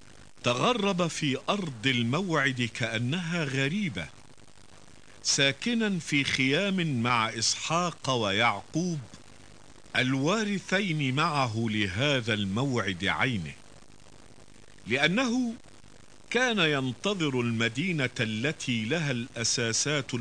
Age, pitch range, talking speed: 50-69, 105-150 Hz, 70 wpm